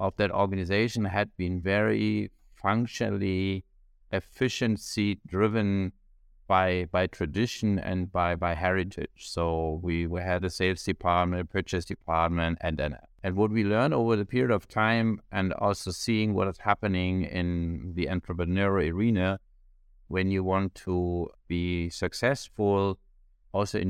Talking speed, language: 140 wpm, English